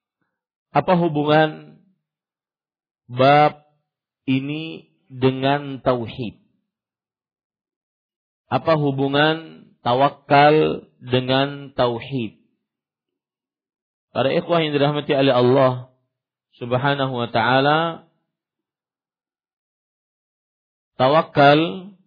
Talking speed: 55 wpm